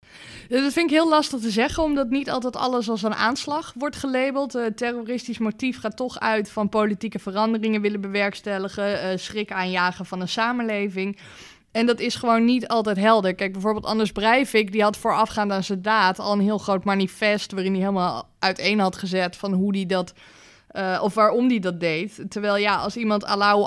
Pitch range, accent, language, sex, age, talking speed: 195-225 Hz, Dutch, Dutch, female, 20-39, 190 wpm